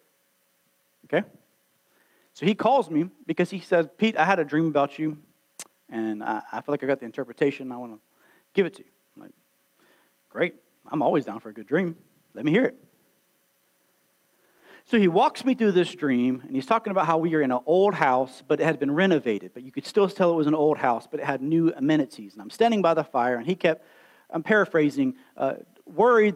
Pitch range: 160-250 Hz